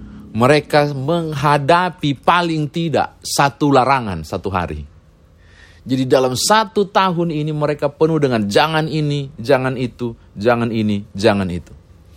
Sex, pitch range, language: male, 105-155 Hz, Indonesian